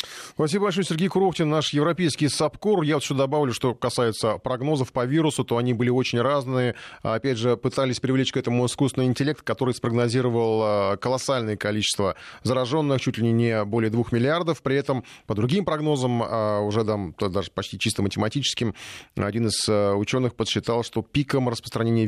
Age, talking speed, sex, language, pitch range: 30-49, 160 wpm, male, Russian, 110-130 Hz